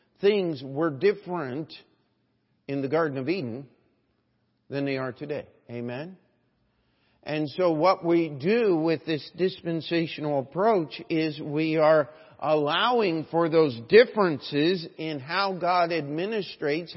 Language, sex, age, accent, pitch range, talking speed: English, male, 50-69, American, 155-185 Hz, 115 wpm